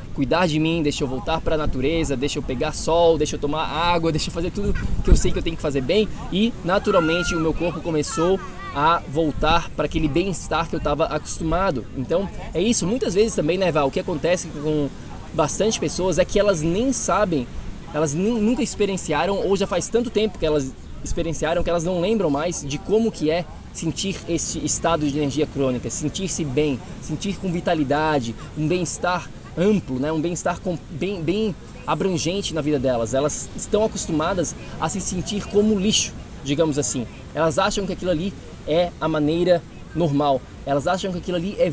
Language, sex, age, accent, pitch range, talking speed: Portuguese, male, 20-39, Brazilian, 155-190 Hz, 190 wpm